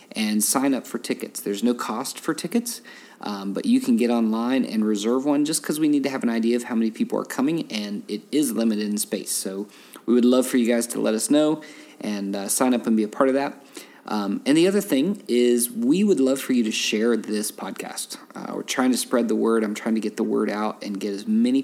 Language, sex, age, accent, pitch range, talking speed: English, male, 40-59, American, 110-175 Hz, 260 wpm